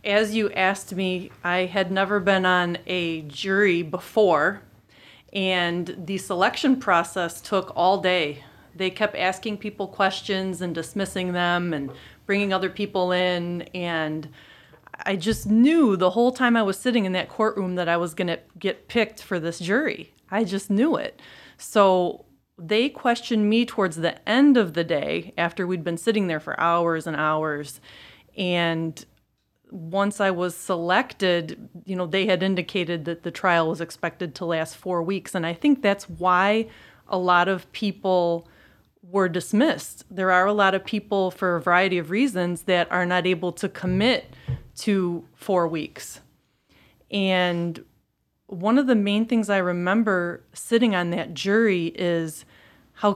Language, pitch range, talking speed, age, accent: English, 175-205 Hz, 160 wpm, 30-49, American